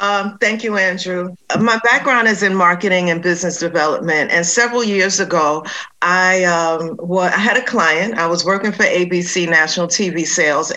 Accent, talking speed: American, 160 wpm